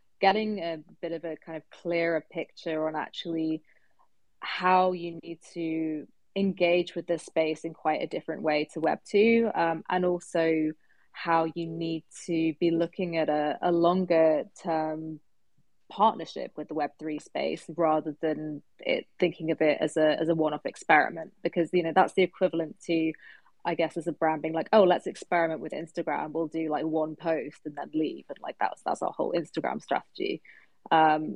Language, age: English, 20-39